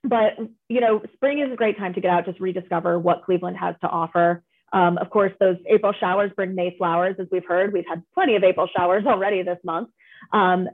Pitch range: 175-210 Hz